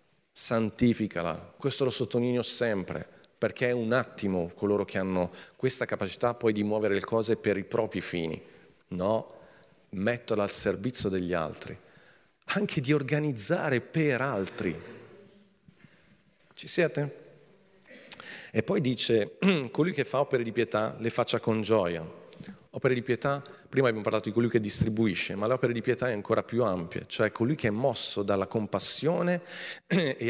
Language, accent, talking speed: Italian, native, 150 wpm